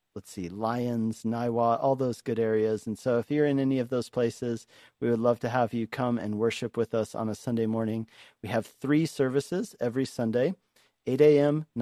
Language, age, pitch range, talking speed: English, 40-59, 110-135 Hz, 205 wpm